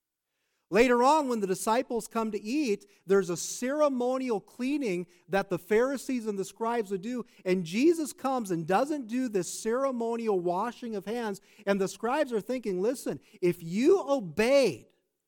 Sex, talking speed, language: male, 155 wpm, English